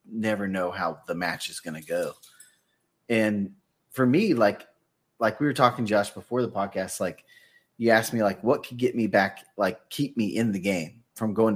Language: English